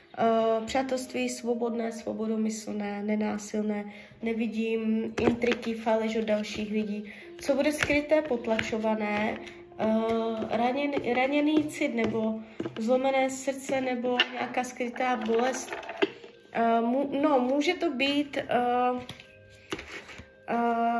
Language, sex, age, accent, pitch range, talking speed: Czech, female, 20-39, native, 225-280 Hz, 95 wpm